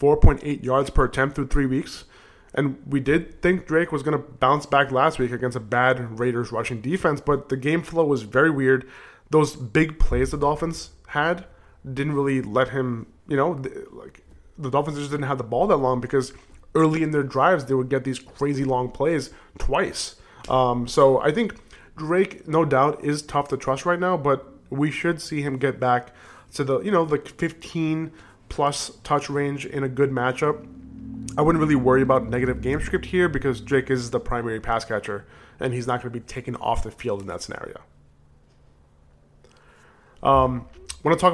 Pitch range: 125-150 Hz